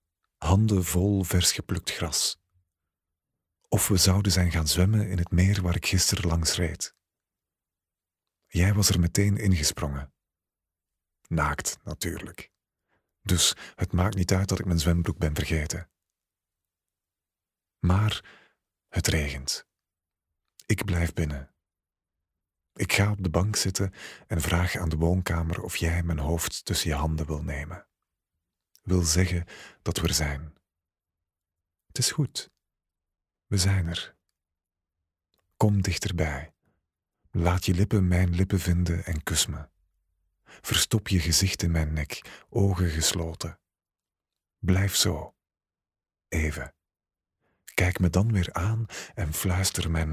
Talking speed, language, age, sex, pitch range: 125 wpm, Dutch, 40-59, male, 85-95 Hz